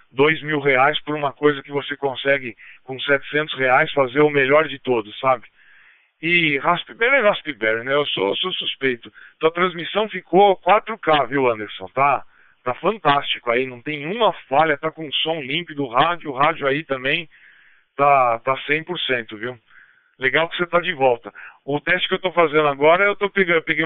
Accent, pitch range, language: Brazilian, 130-160 Hz, Portuguese